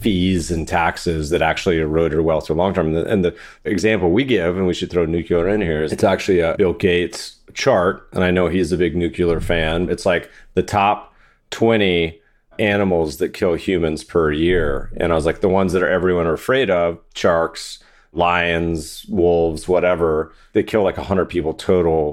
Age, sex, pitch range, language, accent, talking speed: 30-49, male, 80-95 Hz, English, American, 195 wpm